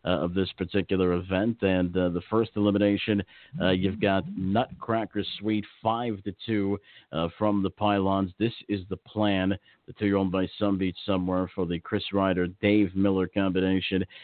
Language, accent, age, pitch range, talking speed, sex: English, American, 50-69, 90-100 Hz, 160 wpm, male